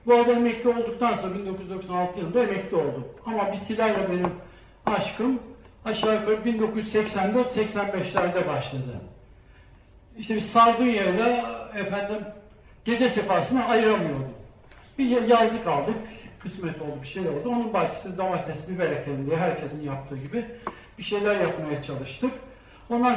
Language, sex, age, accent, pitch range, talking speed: Turkish, male, 60-79, native, 180-240 Hz, 110 wpm